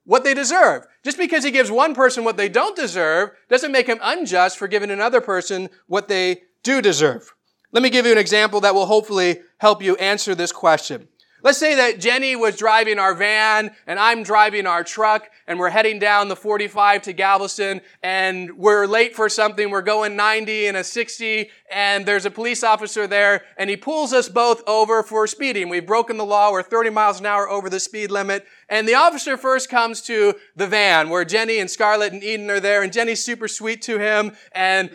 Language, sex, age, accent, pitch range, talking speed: English, male, 30-49, American, 200-240 Hz, 210 wpm